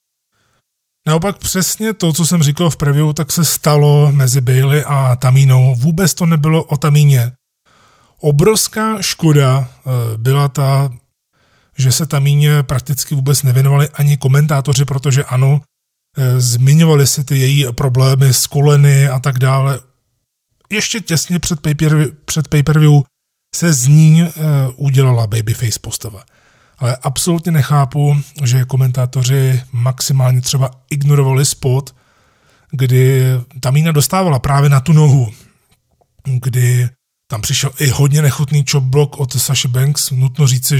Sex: male